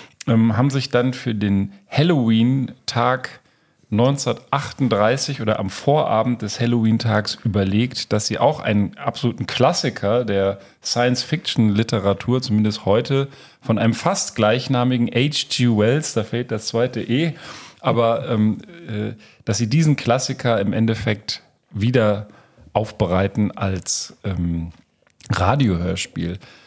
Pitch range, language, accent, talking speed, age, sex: 105-135 Hz, German, German, 105 wpm, 40-59, male